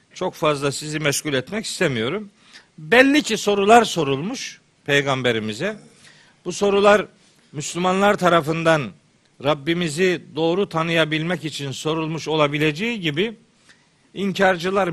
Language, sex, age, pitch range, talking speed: Turkish, male, 50-69, 150-200 Hz, 90 wpm